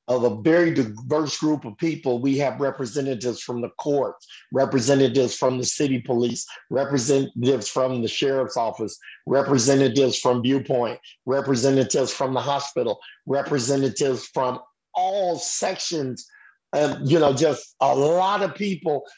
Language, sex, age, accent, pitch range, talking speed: English, male, 50-69, American, 140-185 Hz, 130 wpm